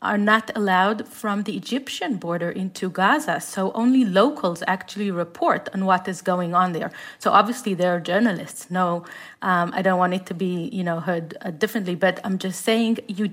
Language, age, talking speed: English, 30-49, 195 wpm